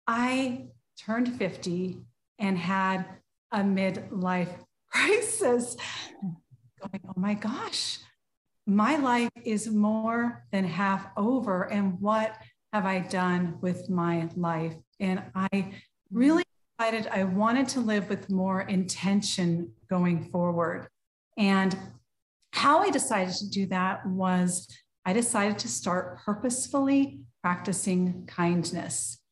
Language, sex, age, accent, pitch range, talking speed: English, female, 40-59, American, 185-240 Hz, 115 wpm